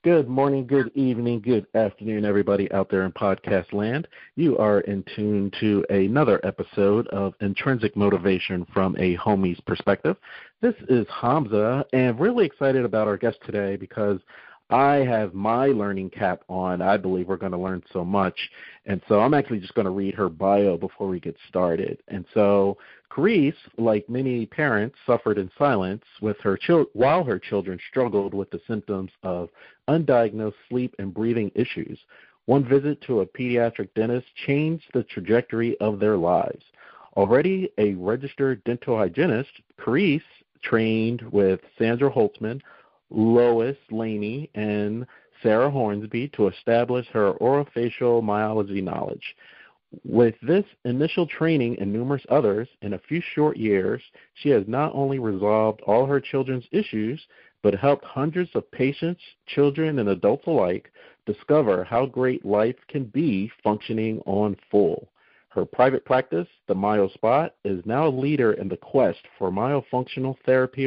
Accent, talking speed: American, 150 wpm